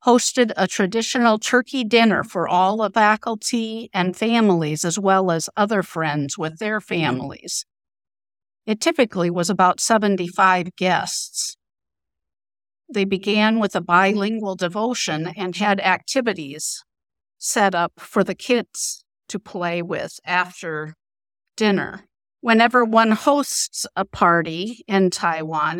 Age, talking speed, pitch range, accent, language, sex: 50-69, 120 wpm, 175-220 Hz, American, English, female